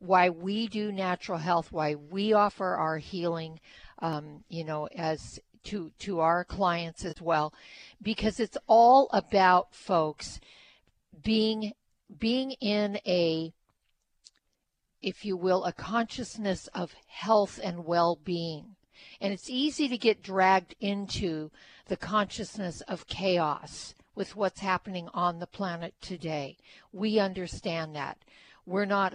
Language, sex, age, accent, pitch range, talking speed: English, female, 60-79, American, 175-215 Hz, 125 wpm